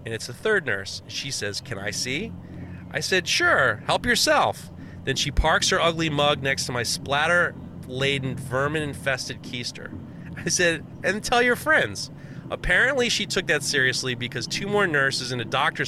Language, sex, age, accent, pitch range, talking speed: English, male, 30-49, American, 125-170 Hz, 170 wpm